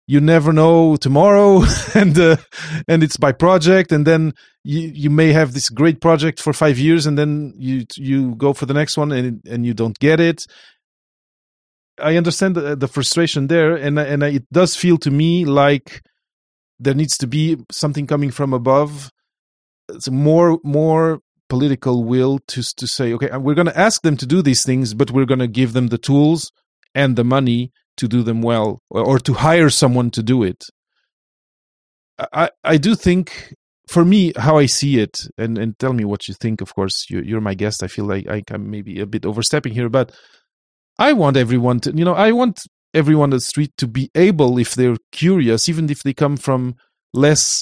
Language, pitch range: English, 125-155 Hz